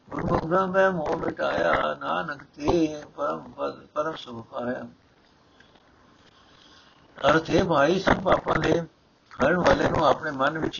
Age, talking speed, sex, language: 60-79, 100 wpm, male, Punjabi